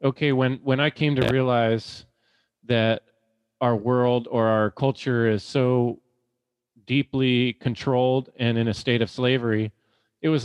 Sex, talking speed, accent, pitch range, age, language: male, 145 wpm, American, 110-130 Hz, 30-49, English